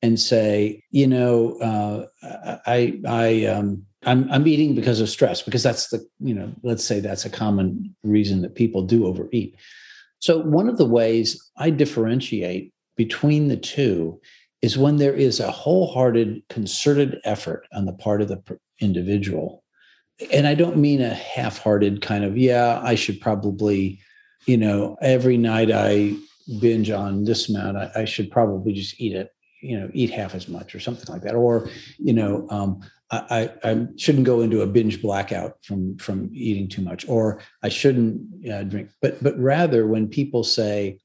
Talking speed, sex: 175 wpm, male